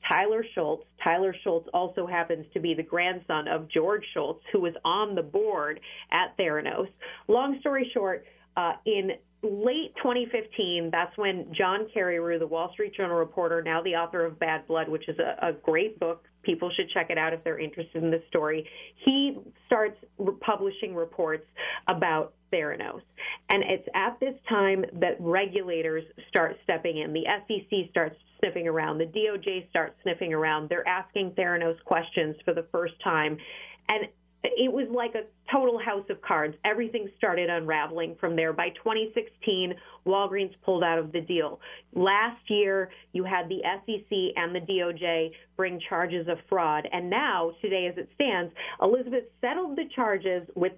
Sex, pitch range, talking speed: female, 165-215 Hz, 165 wpm